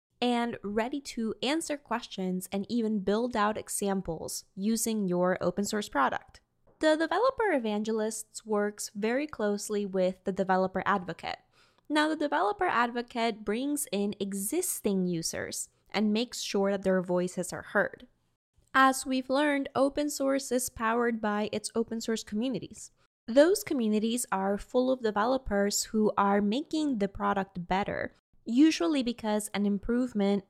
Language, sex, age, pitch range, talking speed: English, female, 10-29, 200-260 Hz, 135 wpm